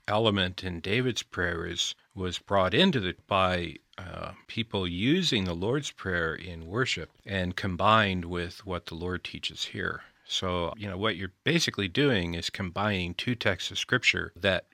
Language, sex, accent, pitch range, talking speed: English, male, American, 85-105 Hz, 160 wpm